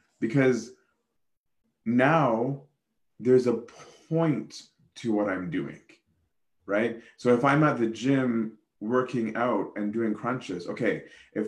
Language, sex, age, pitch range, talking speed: English, male, 30-49, 105-125 Hz, 120 wpm